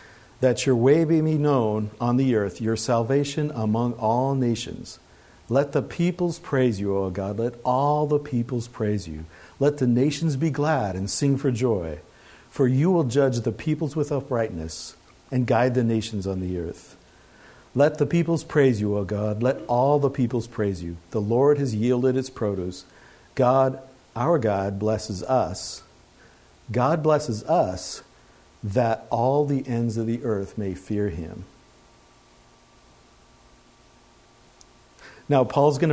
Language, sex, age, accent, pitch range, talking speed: English, male, 50-69, American, 110-140 Hz, 150 wpm